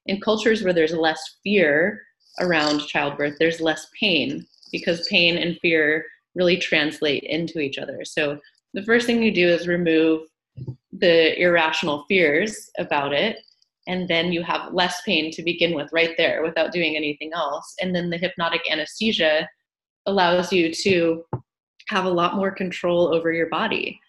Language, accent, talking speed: English, American, 160 wpm